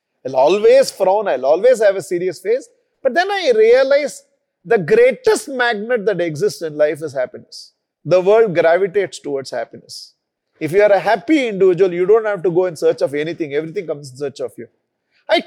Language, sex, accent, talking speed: English, male, Indian, 190 wpm